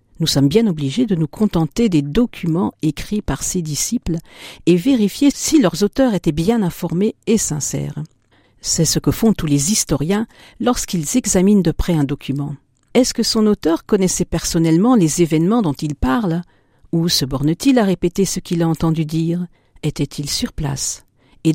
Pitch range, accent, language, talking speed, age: 150-215 Hz, French, French, 170 wpm, 50-69